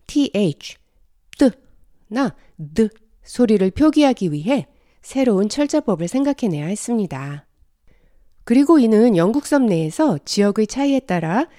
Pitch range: 165-275 Hz